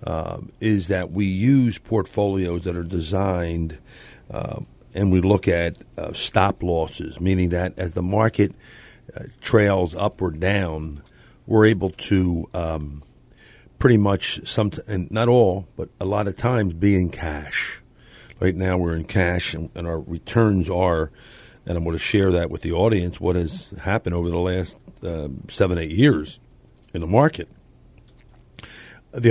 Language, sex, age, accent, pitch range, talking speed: English, male, 50-69, American, 85-105 Hz, 160 wpm